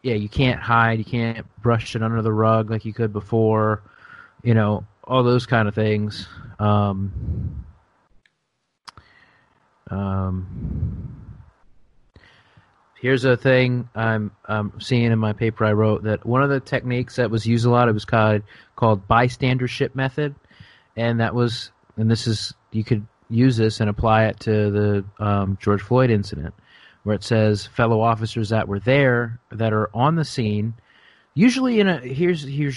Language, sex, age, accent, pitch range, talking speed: English, male, 30-49, American, 105-120 Hz, 160 wpm